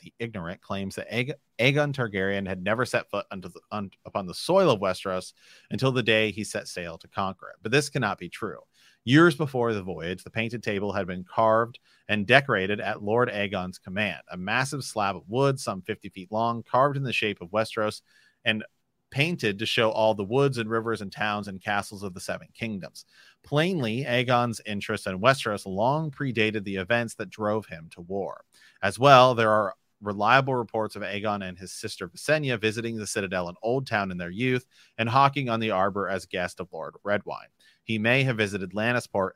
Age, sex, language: 30-49, male, English